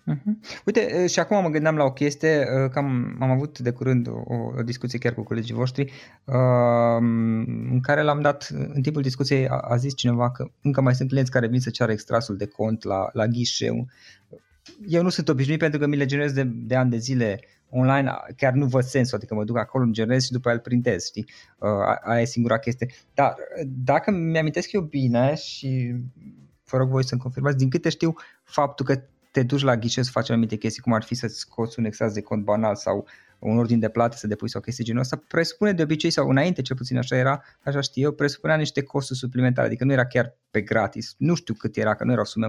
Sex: male